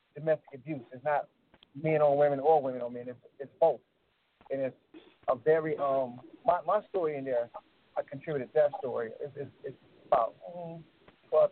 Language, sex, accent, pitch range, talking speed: English, male, American, 130-150 Hz, 175 wpm